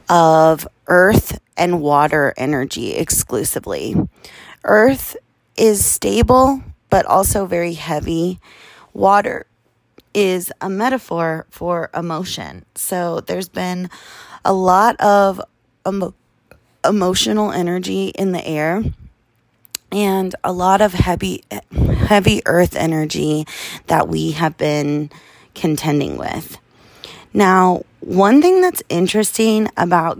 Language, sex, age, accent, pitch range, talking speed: English, female, 20-39, American, 160-185 Hz, 100 wpm